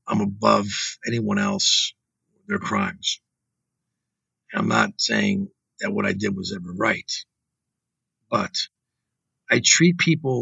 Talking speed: 120 wpm